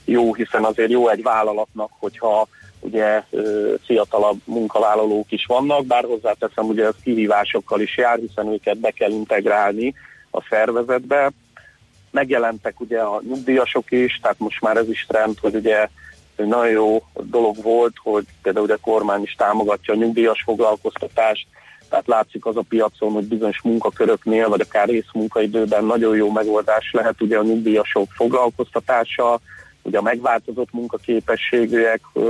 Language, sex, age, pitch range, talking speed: Hungarian, male, 30-49, 110-120 Hz, 140 wpm